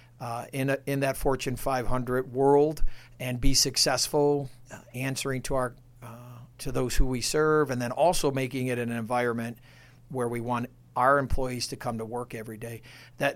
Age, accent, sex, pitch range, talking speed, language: 50-69, American, male, 120-135 Hz, 180 wpm, English